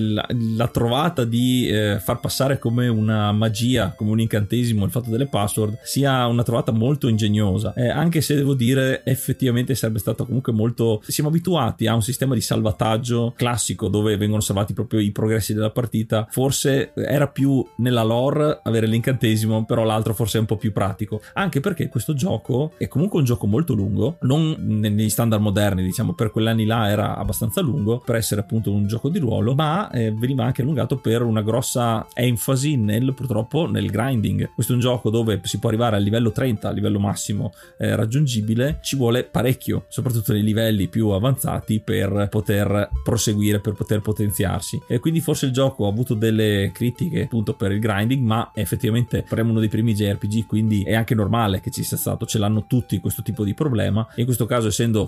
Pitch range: 110-125 Hz